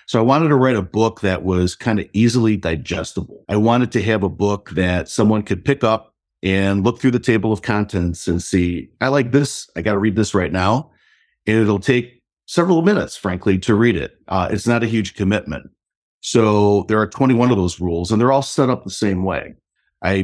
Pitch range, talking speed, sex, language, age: 95-120 Hz, 220 wpm, male, English, 50-69